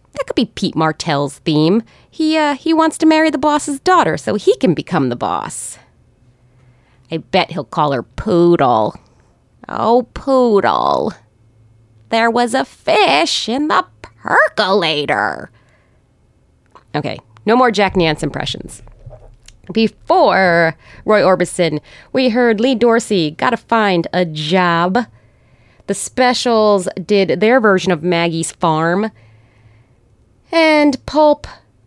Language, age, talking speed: English, 20-39, 120 wpm